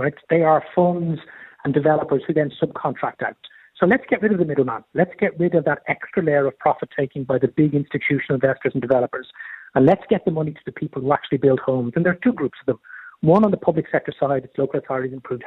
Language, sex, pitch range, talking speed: English, male, 135-170 Hz, 245 wpm